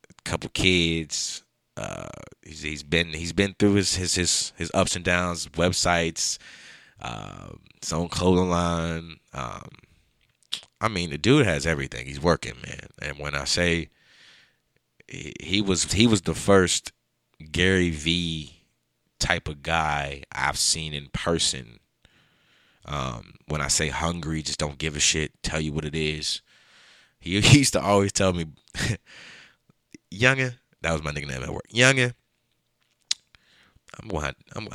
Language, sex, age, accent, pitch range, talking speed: English, male, 20-39, American, 80-100 Hz, 145 wpm